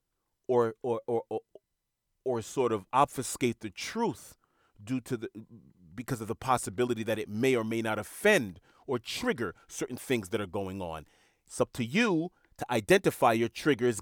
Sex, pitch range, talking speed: male, 110-135 Hz, 170 wpm